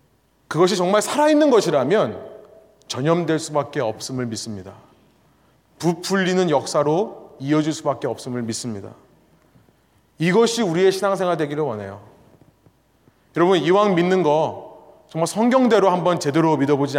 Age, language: 30-49, Korean